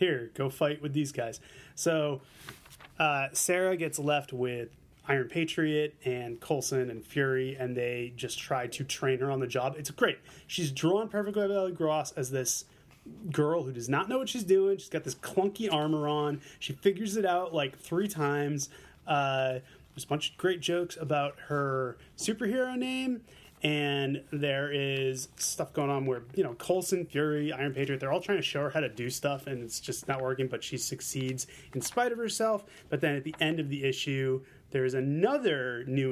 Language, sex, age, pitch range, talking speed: English, male, 30-49, 130-165 Hz, 195 wpm